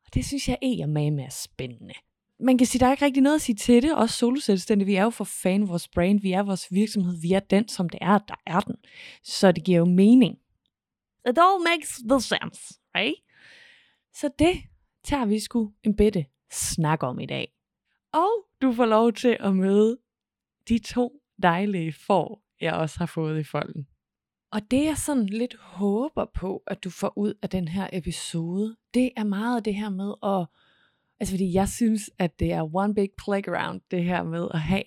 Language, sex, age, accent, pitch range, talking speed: Danish, female, 20-39, native, 175-230 Hz, 210 wpm